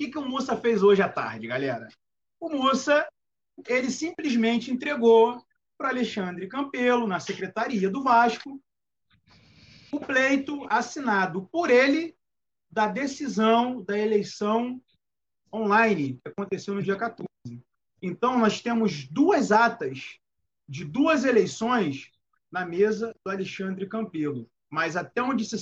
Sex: male